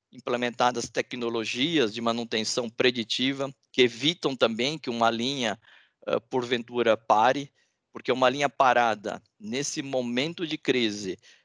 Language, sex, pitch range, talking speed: Portuguese, male, 120-145 Hz, 110 wpm